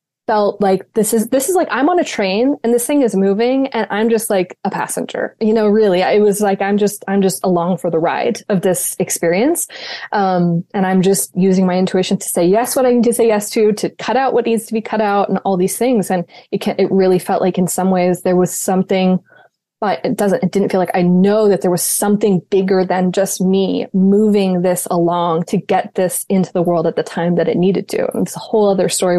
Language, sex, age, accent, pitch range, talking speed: English, female, 20-39, American, 180-210 Hz, 250 wpm